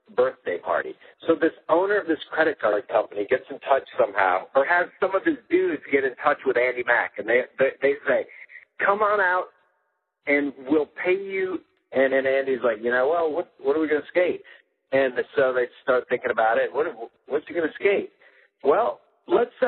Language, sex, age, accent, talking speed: English, male, 50-69, American, 200 wpm